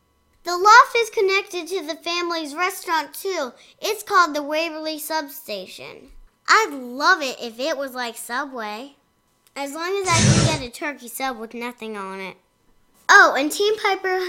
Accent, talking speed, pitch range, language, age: American, 165 wpm, 240-330 Hz, English, 10-29